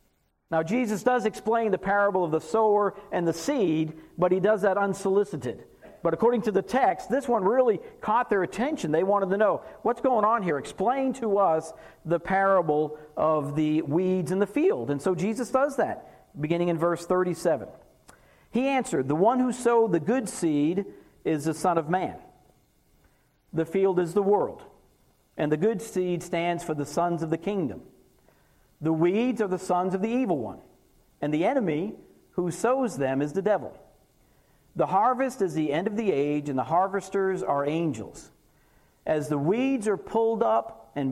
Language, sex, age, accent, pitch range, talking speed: English, male, 50-69, American, 155-215 Hz, 180 wpm